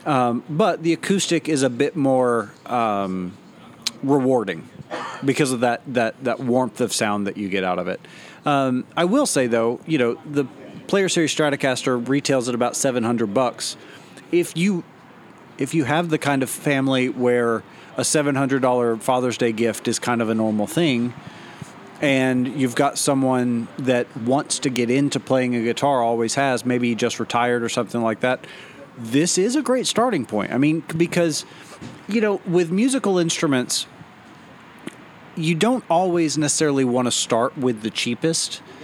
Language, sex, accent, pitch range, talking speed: English, male, American, 120-155 Hz, 160 wpm